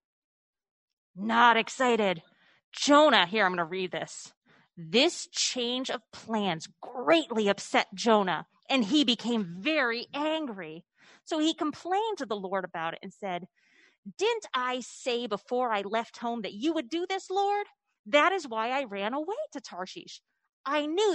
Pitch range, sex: 205-305 Hz, female